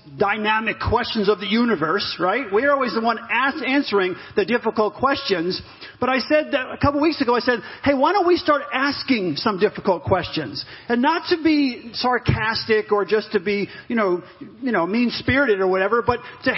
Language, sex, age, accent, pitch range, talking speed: English, male, 40-59, American, 190-250 Hz, 190 wpm